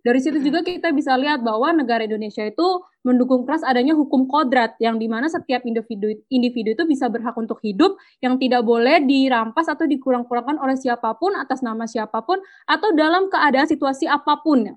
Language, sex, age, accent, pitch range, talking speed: Indonesian, female, 20-39, native, 235-310 Hz, 165 wpm